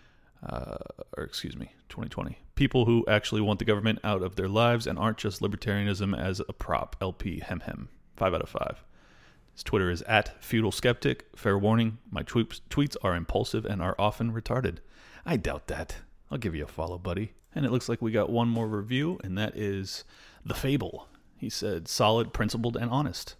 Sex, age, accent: male, 30-49, American